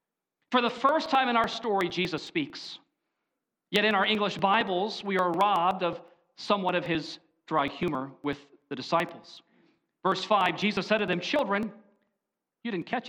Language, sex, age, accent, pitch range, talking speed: English, male, 40-59, American, 175-230 Hz, 165 wpm